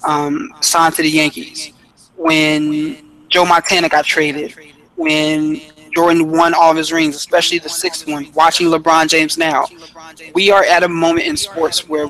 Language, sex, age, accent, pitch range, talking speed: English, male, 20-39, American, 155-180 Hz, 165 wpm